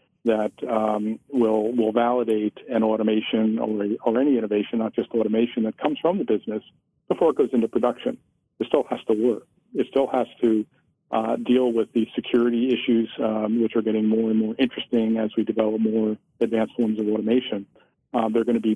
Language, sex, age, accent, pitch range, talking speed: English, male, 50-69, American, 110-120 Hz, 190 wpm